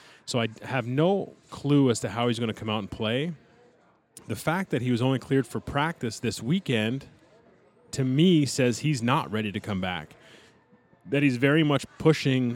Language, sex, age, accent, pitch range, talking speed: English, male, 30-49, American, 110-135 Hz, 190 wpm